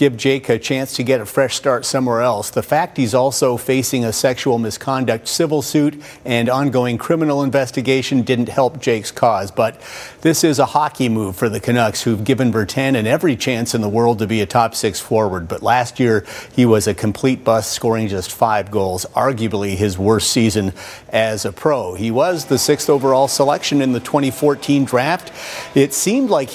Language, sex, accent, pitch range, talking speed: English, male, American, 115-140 Hz, 190 wpm